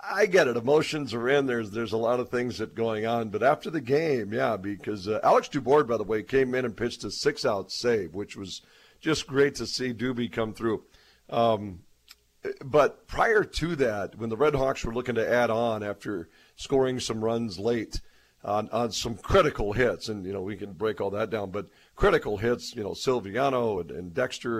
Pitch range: 105-130 Hz